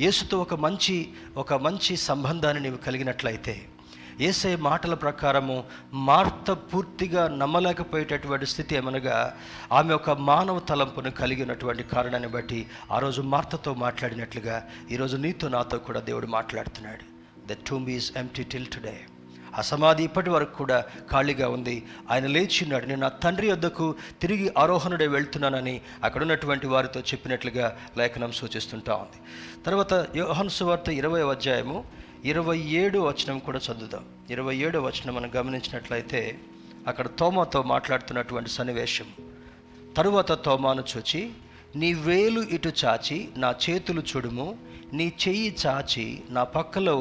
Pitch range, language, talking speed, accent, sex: 120-165 Hz, Telugu, 115 wpm, native, male